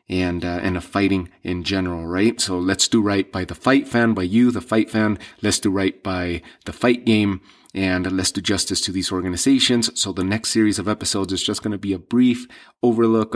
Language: English